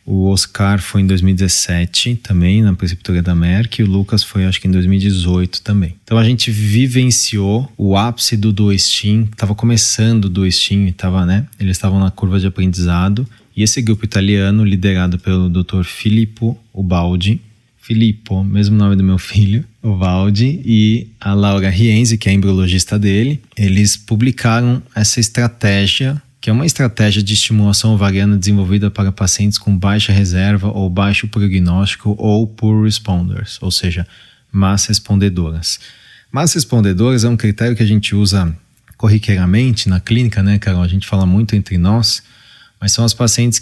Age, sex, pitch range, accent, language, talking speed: 20-39, male, 95-115 Hz, Brazilian, Portuguese, 155 wpm